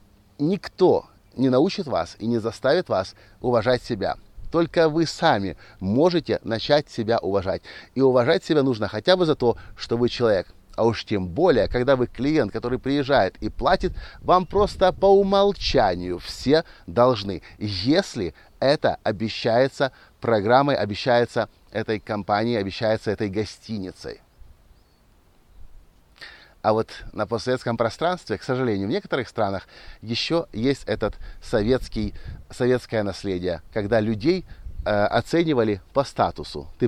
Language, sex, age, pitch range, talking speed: Russian, male, 30-49, 100-140 Hz, 125 wpm